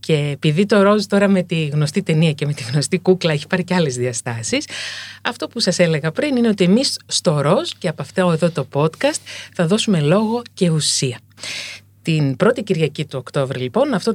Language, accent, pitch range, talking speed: Greek, native, 145-200 Hz, 200 wpm